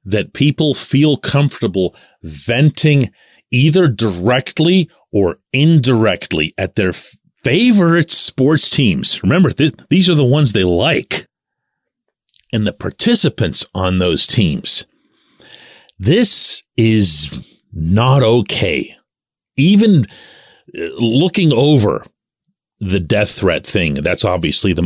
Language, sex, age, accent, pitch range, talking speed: English, male, 40-59, American, 95-145 Hz, 105 wpm